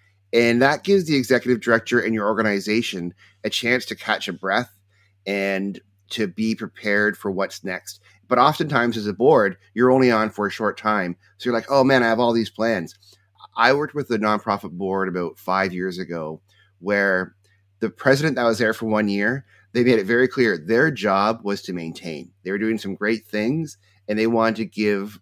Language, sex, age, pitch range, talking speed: English, male, 30-49, 100-115 Hz, 200 wpm